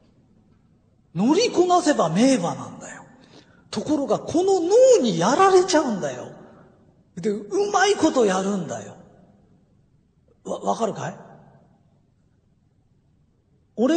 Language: Japanese